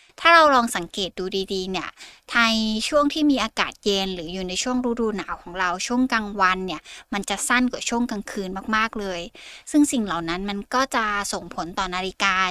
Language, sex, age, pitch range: Thai, female, 20-39, 190-240 Hz